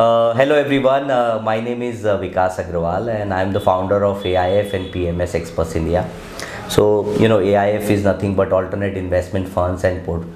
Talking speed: 190 wpm